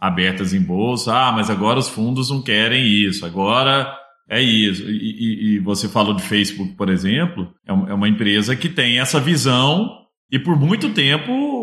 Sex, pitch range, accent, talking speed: male, 105-150 Hz, Brazilian, 175 wpm